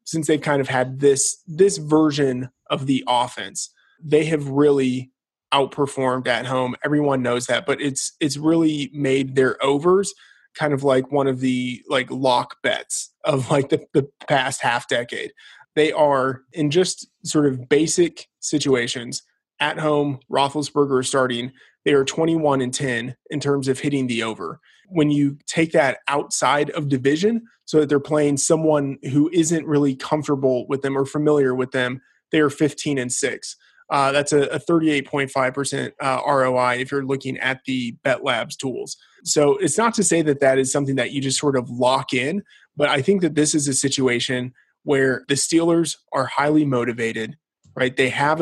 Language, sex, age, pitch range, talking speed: English, male, 20-39, 130-150 Hz, 175 wpm